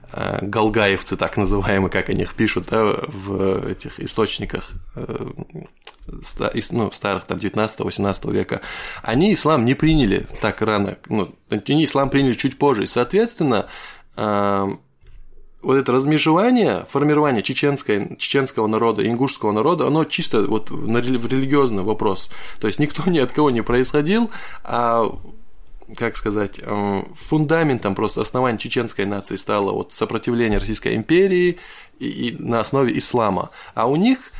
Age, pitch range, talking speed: 20-39, 105-140 Hz, 130 wpm